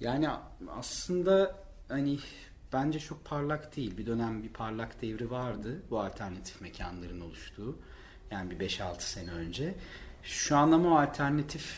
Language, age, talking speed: Turkish, 40-59, 130 wpm